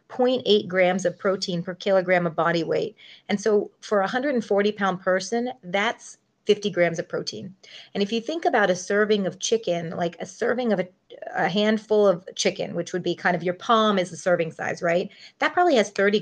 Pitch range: 175-210 Hz